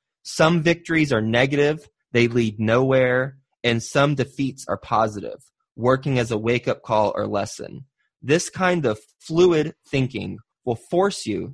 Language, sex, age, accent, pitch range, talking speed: English, male, 20-39, American, 115-145 Hz, 140 wpm